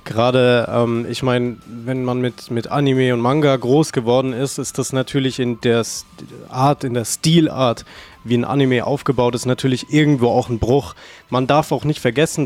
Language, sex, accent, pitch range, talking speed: German, male, German, 125-150 Hz, 185 wpm